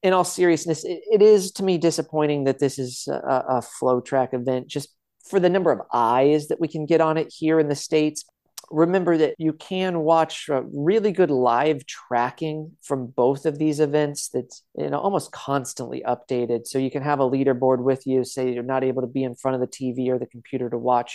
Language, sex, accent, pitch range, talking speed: English, male, American, 125-160 Hz, 205 wpm